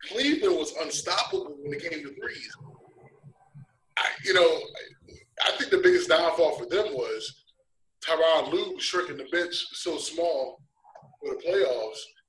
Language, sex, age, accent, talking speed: English, male, 20-39, American, 145 wpm